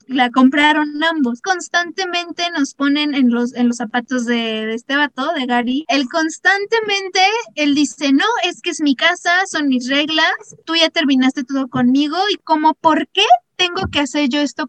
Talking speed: 180 wpm